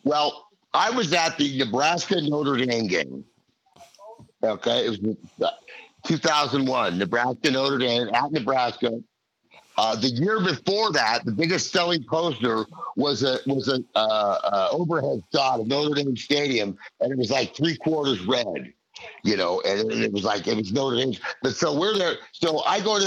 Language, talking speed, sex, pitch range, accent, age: English, 170 wpm, male, 125-165 Hz, American, 50-69